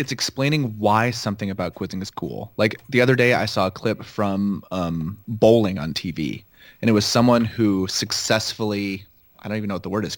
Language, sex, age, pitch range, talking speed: English, male, 30-49, 100-115 Hz, 205 wpm